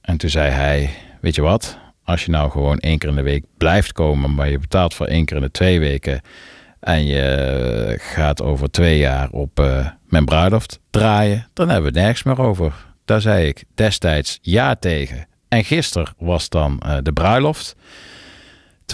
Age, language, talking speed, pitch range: 50-69, Dutch, 190 wpm, 75-95 Hz